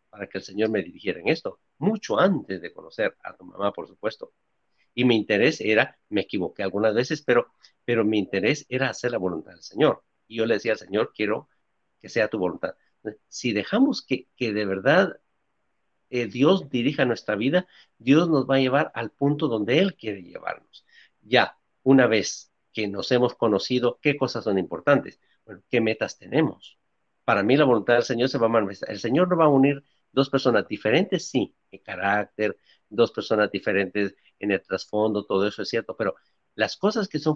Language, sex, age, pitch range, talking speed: Spanish, male, 50-69, 105-140 Hz, 195 wpm